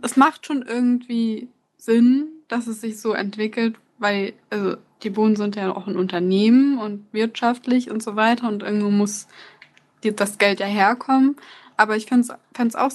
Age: 20-39